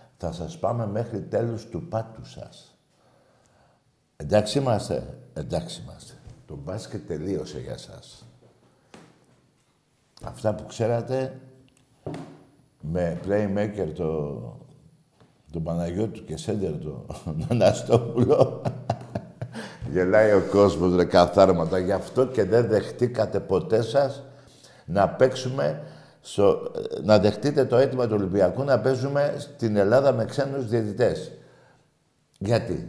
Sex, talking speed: male, 105 wpm